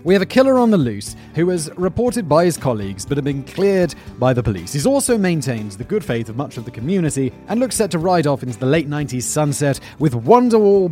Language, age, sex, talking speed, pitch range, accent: English, 30-49, male, 240 wpm, 120-185 Hz, British